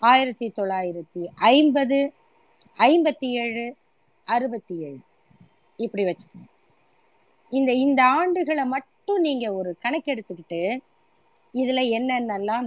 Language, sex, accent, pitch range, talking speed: Tamil, female, native, 195-285 Hz, 85 wpm